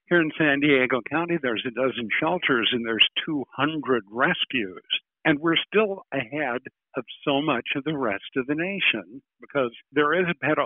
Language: English